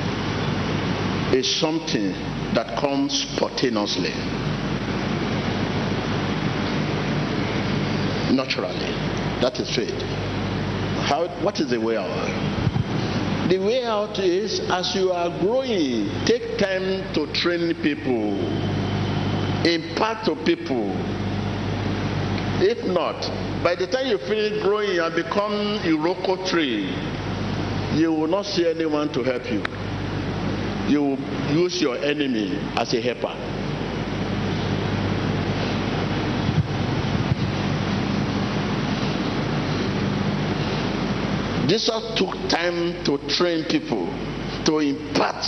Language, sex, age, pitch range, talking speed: English, male, 60-79, 105-180 Hz, 90 wpm